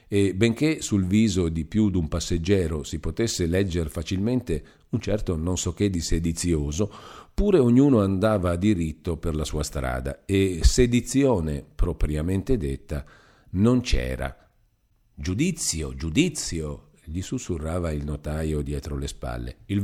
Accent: native